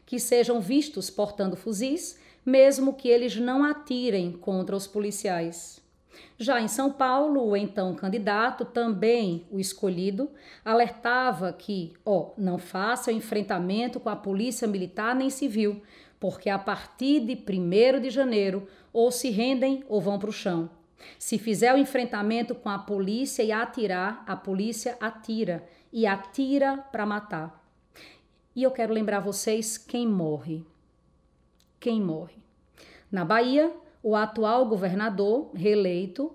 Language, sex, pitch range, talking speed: Portuguese, female, 190-240 Hz, 135 wpm